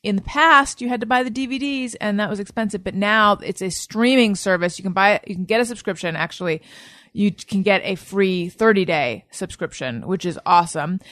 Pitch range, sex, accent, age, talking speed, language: 165-220 Hz, female, American, 30-49, 215 wpm, English